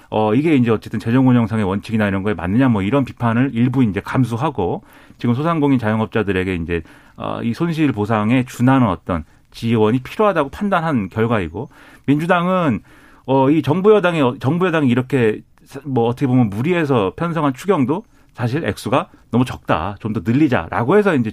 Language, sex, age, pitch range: Korean, male, 40-59, 110-145 Hz